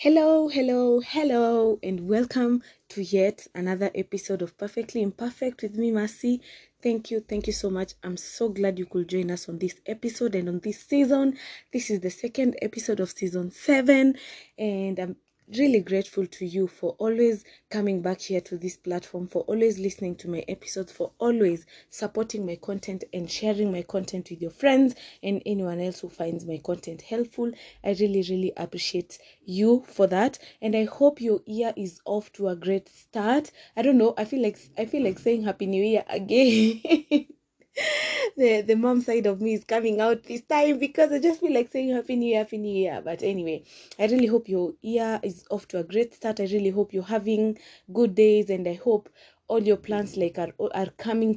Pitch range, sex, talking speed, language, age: 185-235 Hz, female, 195 wpm, English, 20-39